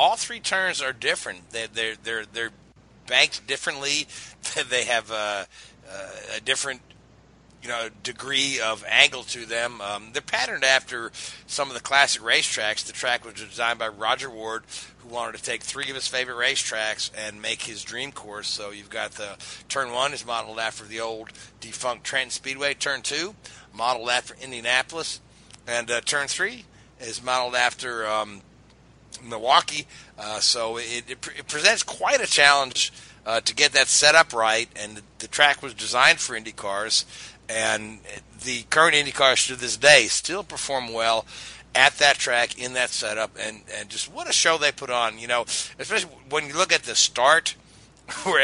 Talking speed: 175 wpm